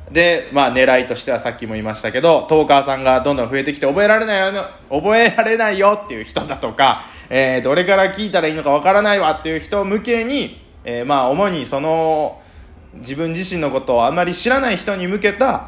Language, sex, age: Japanese, male, 20-39